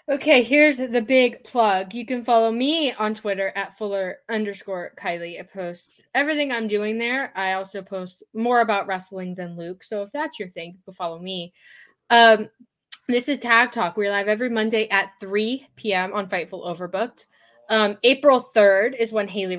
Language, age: English, 10-29